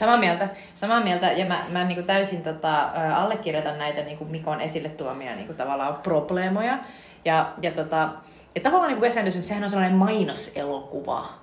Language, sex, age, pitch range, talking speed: Finnish, female, 30-49, 155-215 Hz, 165 wpm